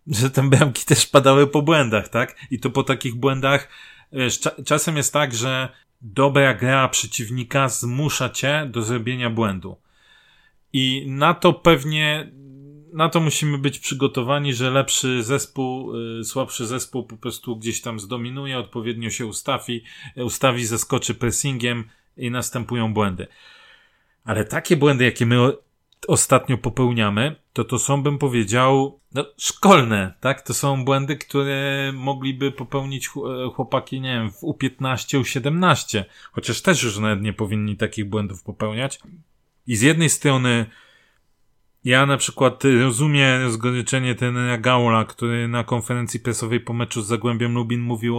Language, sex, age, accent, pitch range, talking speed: Polish, male, 30-49, native, 120-140 Hz, 135 wpm